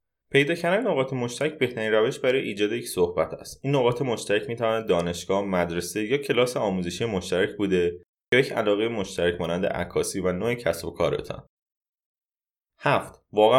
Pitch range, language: 90-135 Hz, Persian